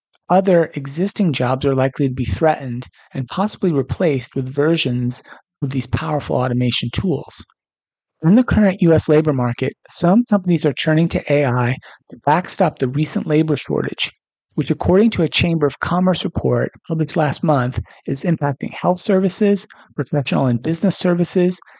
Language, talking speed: English, 150 wpm